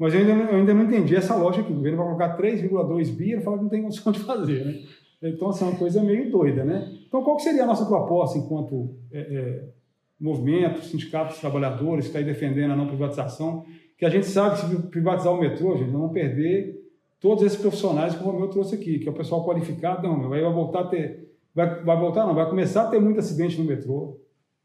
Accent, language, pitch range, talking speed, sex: Brazilian, Portuguese, 155-200 Hz, 240 wpm, male